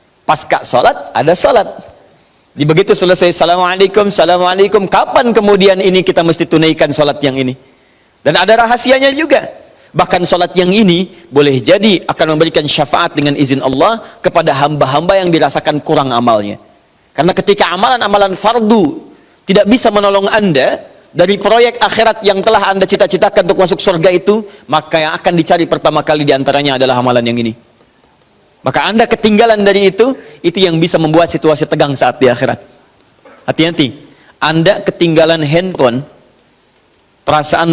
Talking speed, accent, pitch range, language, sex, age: 140 wpm, native, 145-195 Hz, Indonesian, male, 40-59